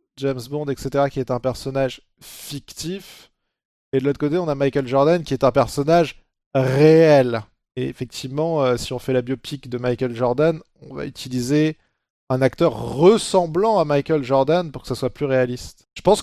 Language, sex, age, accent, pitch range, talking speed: French, male, 20-39, French, 130-160 Hz, 180 wpm